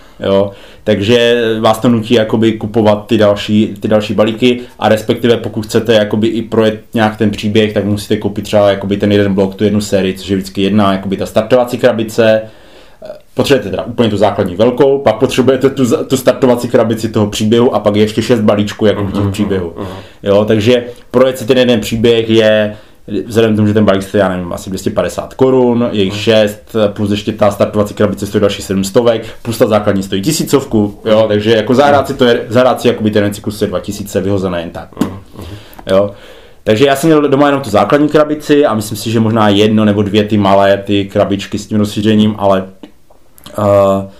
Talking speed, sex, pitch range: 185 wpm, male, 100-120 Hz